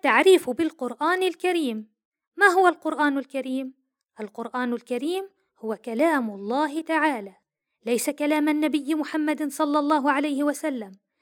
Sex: female